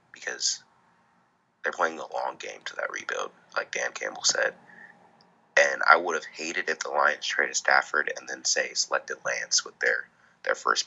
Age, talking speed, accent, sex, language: 20-39, 190 wpm, American, male, English